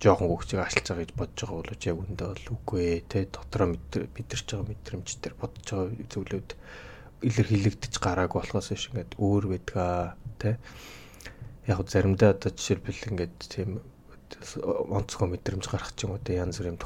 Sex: male